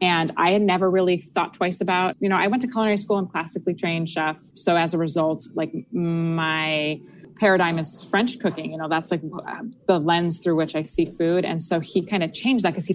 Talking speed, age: 225 wpm, 20-39